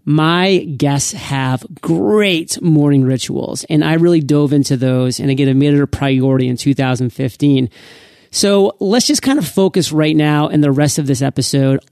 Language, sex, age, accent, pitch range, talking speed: English, male, 30-49, American, 135-160 Hz, 175 wpm